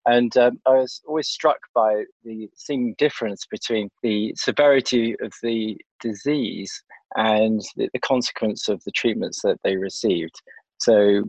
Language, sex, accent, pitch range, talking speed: English, male, British, 110-135 Hz, 145 wpm